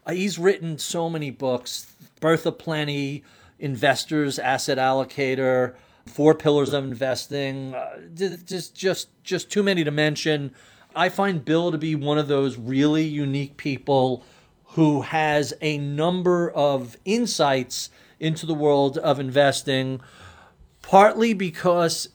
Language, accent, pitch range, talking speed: English, American, 135-170 Hz, 135 wpm